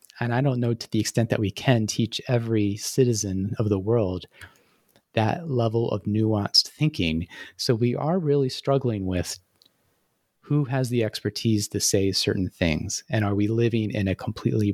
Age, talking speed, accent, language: 30-49, 170 wpm, American, English